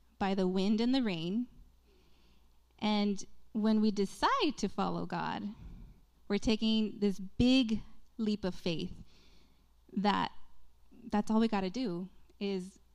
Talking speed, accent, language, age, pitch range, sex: 125 wpm, American, Spanish, 20-39, 190-240 Hz, female